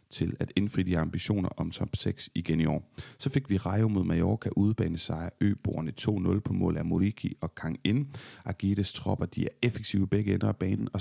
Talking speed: 200 wpm